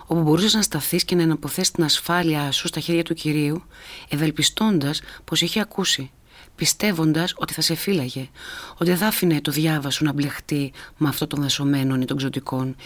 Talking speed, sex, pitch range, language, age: 175 wpm, female, 140-175 Hz, Greek, 30-49